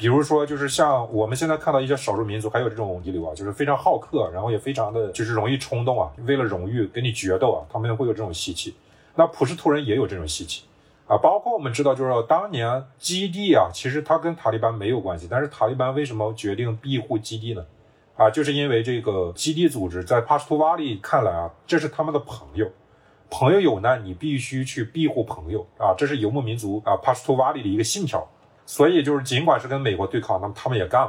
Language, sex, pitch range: Chinese, male, 110-145 Hz